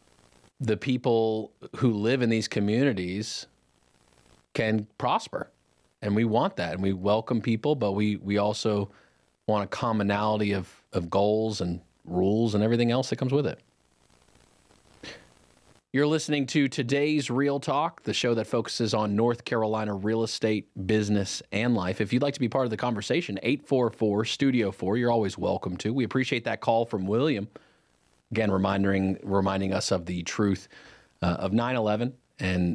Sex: male